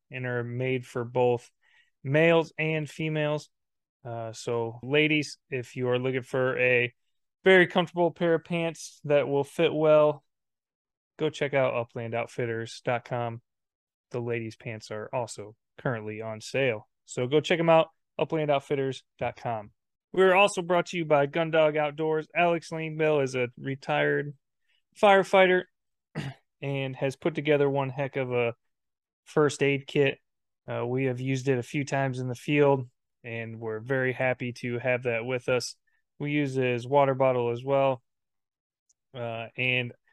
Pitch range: 120-155 Hz